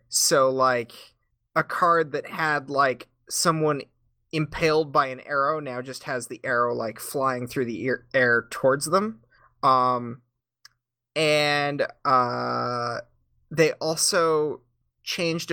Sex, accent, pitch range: male, American, 125-160 Hz